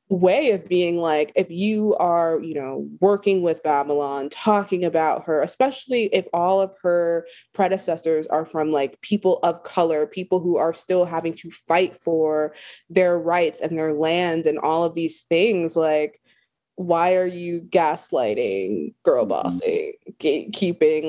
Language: English